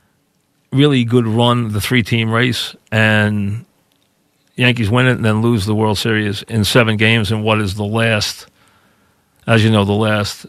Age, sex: 40-59, male